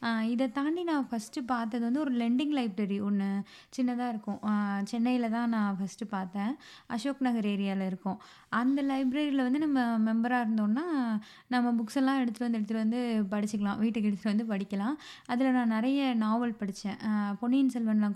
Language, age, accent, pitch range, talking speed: Tamil, 20-39, native, 210-255 Hz, 150 wpm